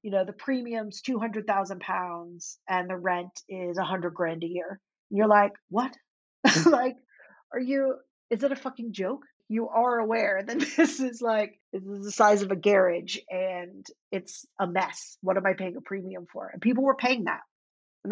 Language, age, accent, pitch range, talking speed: English, 40-59, American, 180-210 Hz, 190 wpm